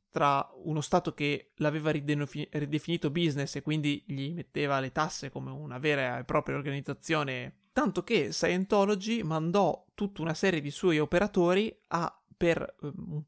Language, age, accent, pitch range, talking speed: Italian, 20-39, native, 150-185 Hz, 145 wpm